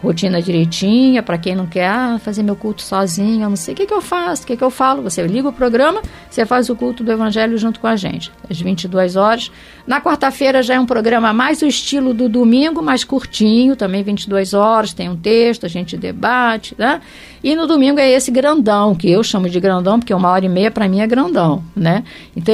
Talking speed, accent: 225 wpm, Brazilian